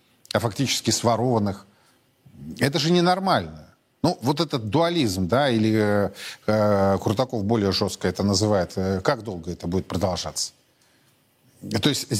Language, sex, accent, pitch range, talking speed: Russian, male, native, 110-150 Hz, 125 wpm